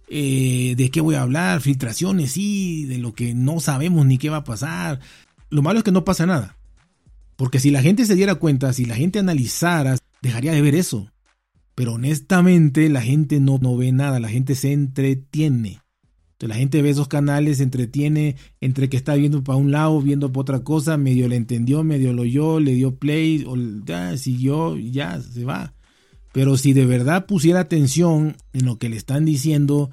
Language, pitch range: Spanish, 125-150 Hz